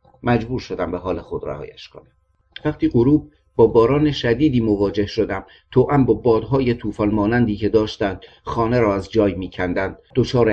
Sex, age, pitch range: male, 50-69, 105-130 Hz